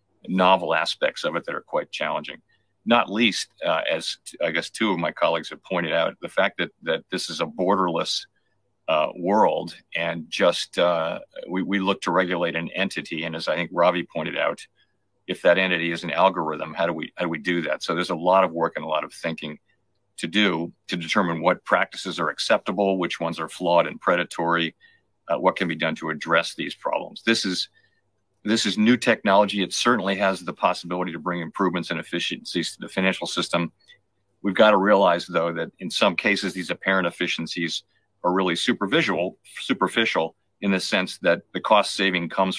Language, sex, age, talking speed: English, male, 50-69, 200 wpm